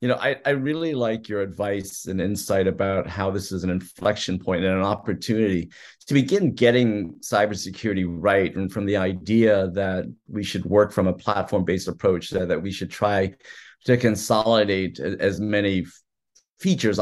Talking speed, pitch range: 165 wpm, 95-115 Hz